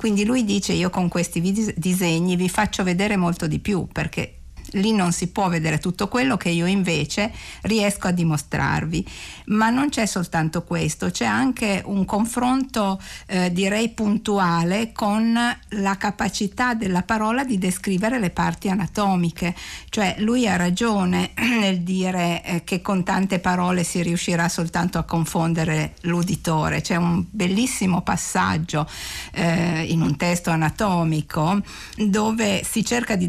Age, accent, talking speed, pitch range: 50-69, native, 140 wpm, 170-210 Hz